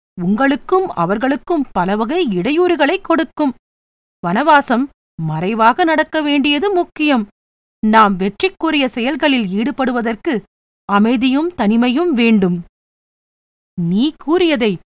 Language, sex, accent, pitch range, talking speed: Tamil, female, native, 210-305 Hz, 75 wpm